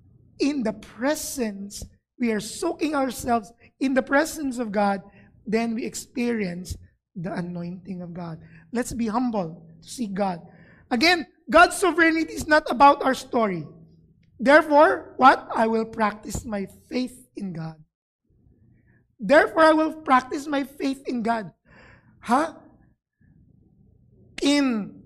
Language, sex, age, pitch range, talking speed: English, male, 20-39, 195-290 Hz, 125 wpm